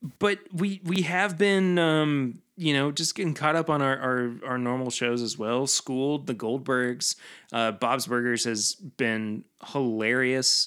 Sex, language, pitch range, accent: male, English, 110-155 Hz, American